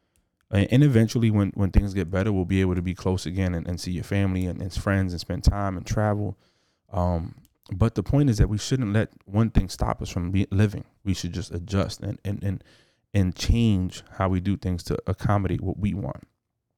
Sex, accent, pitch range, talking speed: male, American, 90-115 Hz, 205 wpm